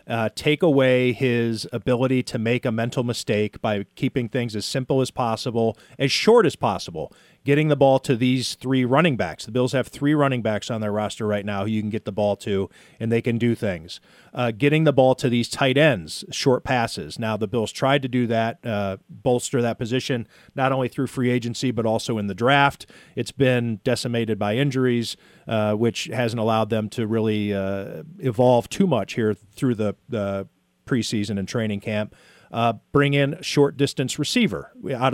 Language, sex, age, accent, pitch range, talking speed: English, male, 40-59, American, 115-140 Hz, 195 wpm